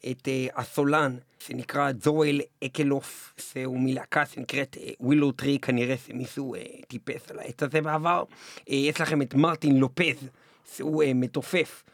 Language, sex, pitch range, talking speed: Hebrew, male, 135-175 Hz, 120 wpm